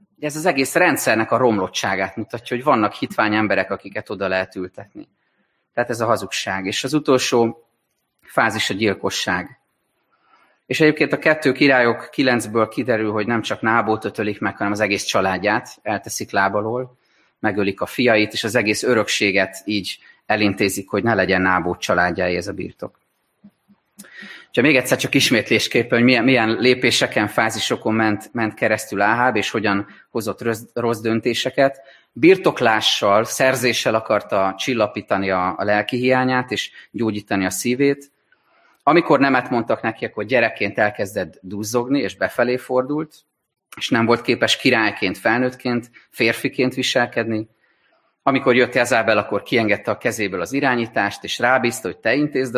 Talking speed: 145 wpm